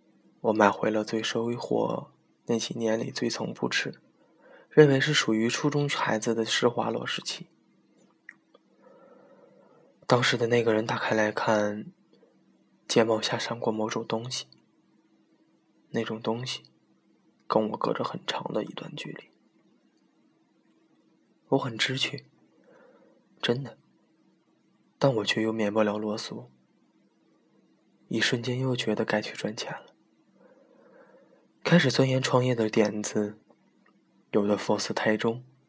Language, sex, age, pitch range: Chinese, male, 20-39, 110-125 Hz